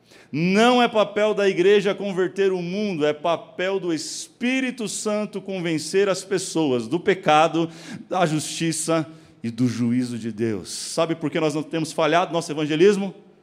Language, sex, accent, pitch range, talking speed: Portuguese, male, Brazilian, 125-170 Hz, 150 wpm